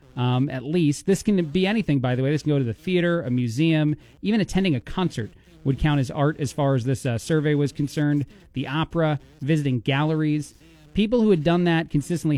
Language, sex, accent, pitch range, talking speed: English, male, American, 140-180 Hz, 215 wpm